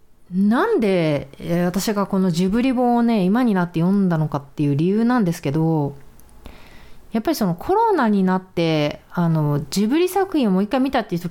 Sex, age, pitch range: female, 30-49, 160-230 Hz